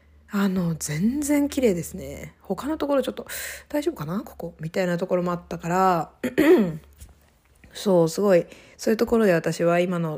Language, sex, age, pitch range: Japanese, female, 20-39, 165-220 Hz